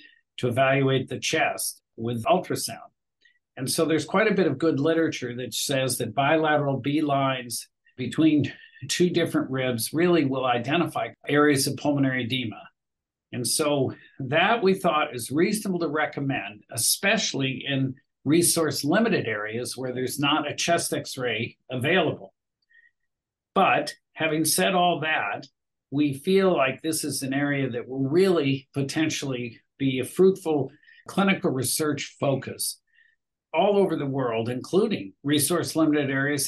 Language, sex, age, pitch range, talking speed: English, male, 50-69, 130-165 Hz, 135 wpm